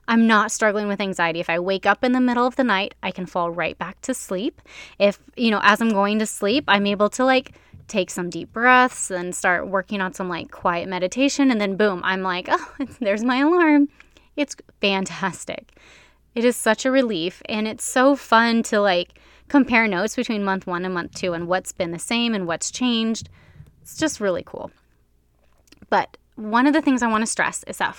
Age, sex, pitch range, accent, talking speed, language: 20-39, female, 190-250 Hz, American, 210 wpm, English